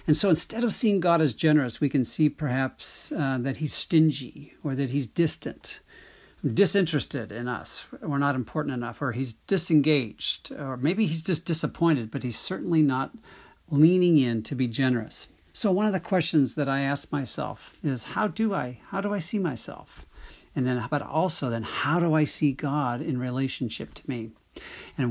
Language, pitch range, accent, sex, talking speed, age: English, 125-155 Hz, American, male, 180 wpm, 50-69